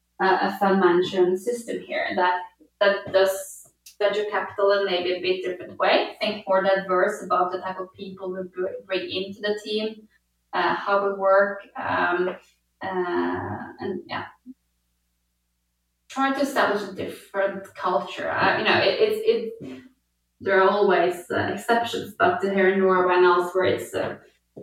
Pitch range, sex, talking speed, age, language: 180-205 Hz, female, 155 wpm, 20-39, English